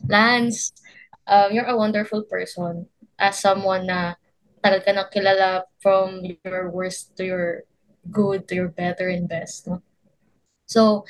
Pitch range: 185-220 Hz